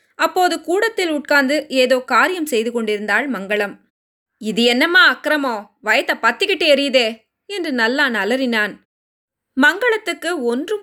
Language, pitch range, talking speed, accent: Tamil, 245-315 Hz, 105 wpm, native